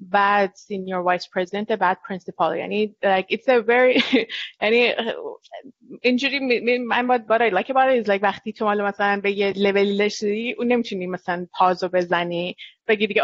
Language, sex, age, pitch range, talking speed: Persian, female, 20-39, 185-220 Hz, 210 wpm